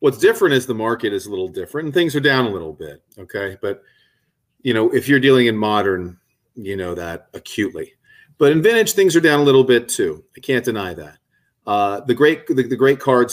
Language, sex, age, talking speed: English, male, 40-59, 225 wpm